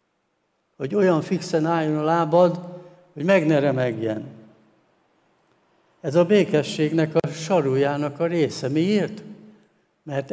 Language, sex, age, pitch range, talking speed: Hungarian, male, 70-89, 135-170 Hz, 110 wpm